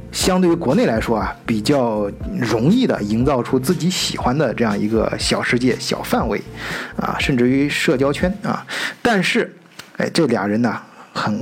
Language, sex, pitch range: Chinese, male, 125-175 Hz